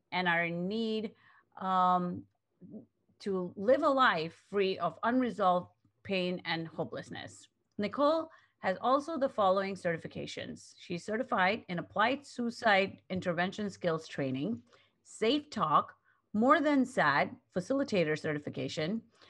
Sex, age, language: female, 30-49, English